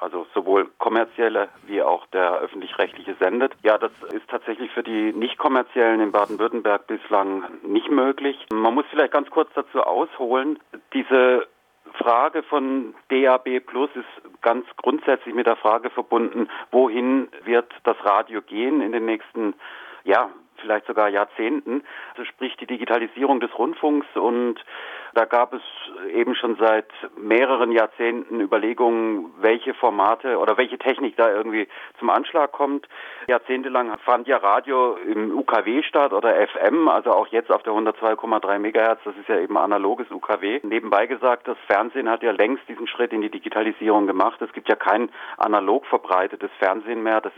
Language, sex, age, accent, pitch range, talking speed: German, male, 40-59, German, 110-135 Hz, 155 wpm